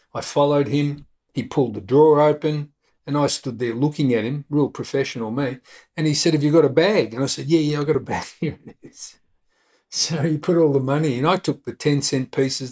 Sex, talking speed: male, 240 wpm